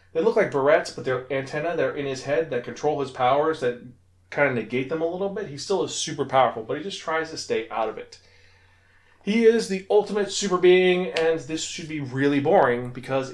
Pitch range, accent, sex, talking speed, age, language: 125-165 Hz, American, male, 230 wpm, 30-49, English